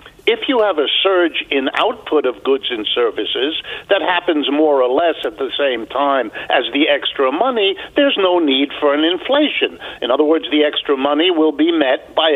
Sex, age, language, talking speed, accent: male, 60-79, English, 195 wpm, American